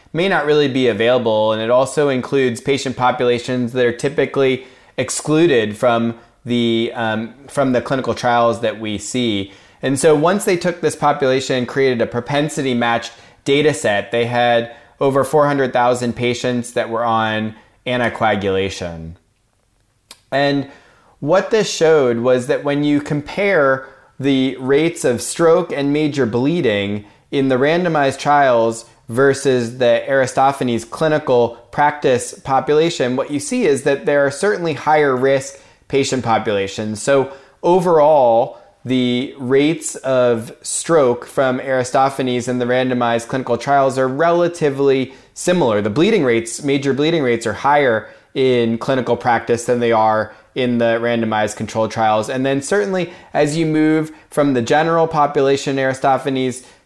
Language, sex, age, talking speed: English, male, 20-39, 140 wpm